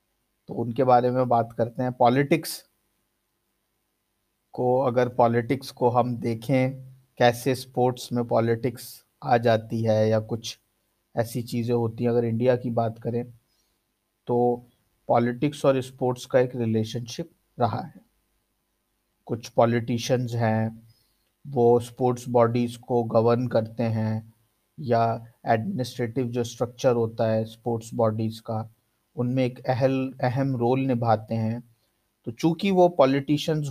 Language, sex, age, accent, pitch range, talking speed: Hindi, male, 50-69, native, 115-130 Hz, 125 wpm